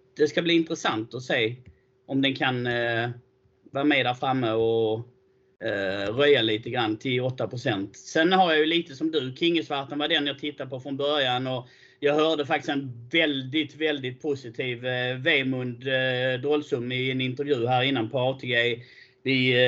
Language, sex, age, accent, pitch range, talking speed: Swedish, male, 30-49, native, 125-150 Hz, 170 wpm